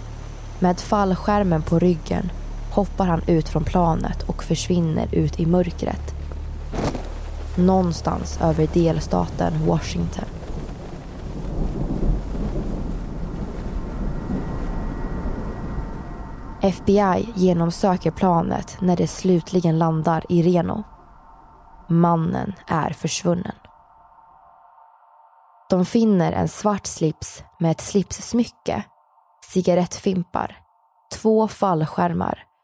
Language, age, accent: Swedish, 20-39, native